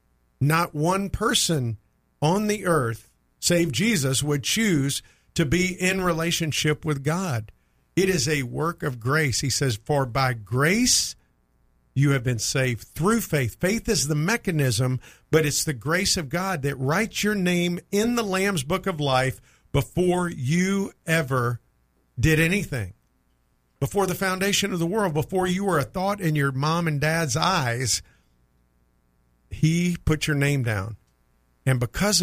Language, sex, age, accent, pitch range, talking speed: English, male, 50-69, American, 125-175 Hz, 155 wpm